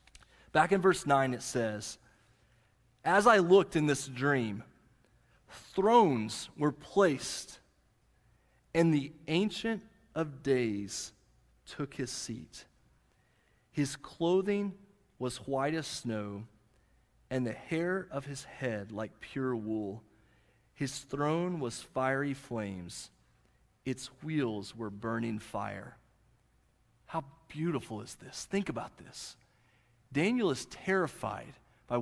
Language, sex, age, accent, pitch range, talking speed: English, male, 40-59, American, 110-155 Hz, 110 wpm